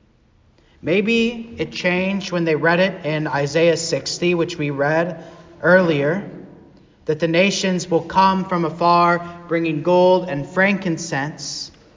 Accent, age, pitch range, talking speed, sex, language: American, 30-49, 160-190 Hz, 125 wpm, male, English